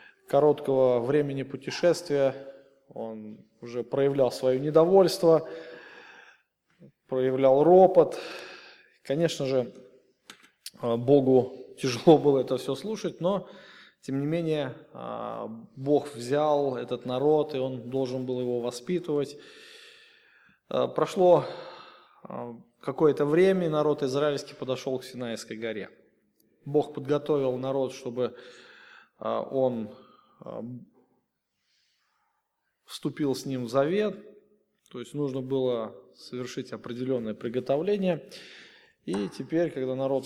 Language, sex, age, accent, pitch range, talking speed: Russian, male, 20-39, native, 125-155 Hz, 95 wpm